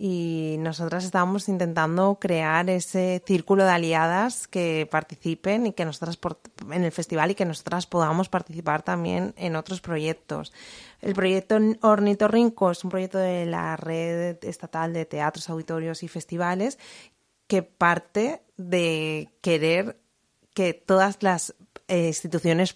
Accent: Spanish